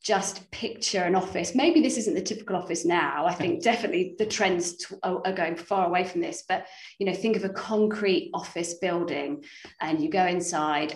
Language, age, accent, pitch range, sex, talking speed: English, 30-49, British, 175-220 Hz, female, 190 wpm